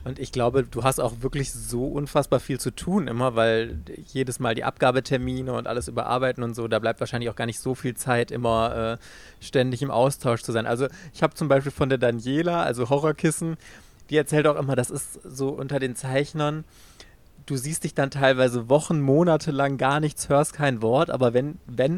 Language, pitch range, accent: German, 125-145 Hz, German